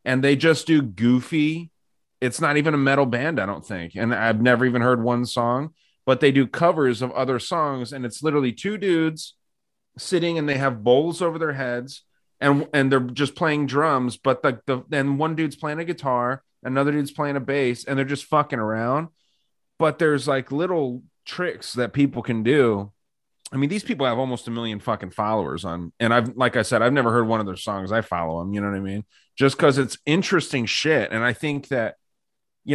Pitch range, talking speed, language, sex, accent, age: 115-140 Hz, 210 wpm, English, male, American, 30-49